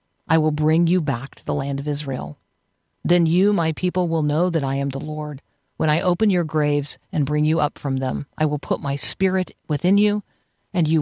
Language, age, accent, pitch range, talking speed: English, 50-69, American, 140-180 Hz, 225 wpm